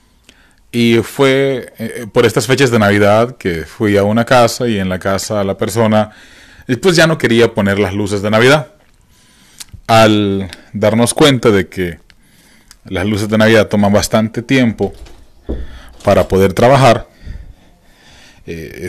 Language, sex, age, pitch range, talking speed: English, male, 30-49, 100-120 Hz, 135 wpm